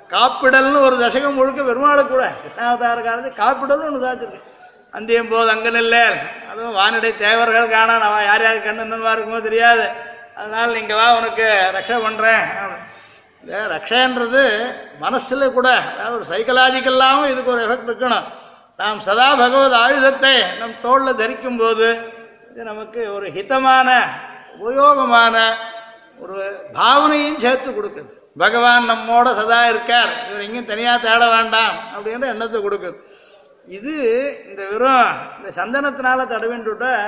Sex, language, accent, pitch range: male, Tamil, native, 225-260 Hz